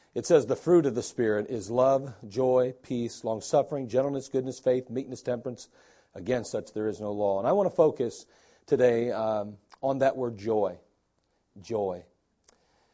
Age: 40-59